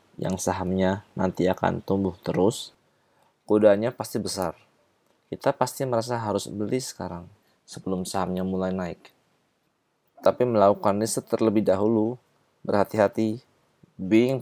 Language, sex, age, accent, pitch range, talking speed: Indonesian, male, 20-39, native, 95-125 Hz, 110 wpm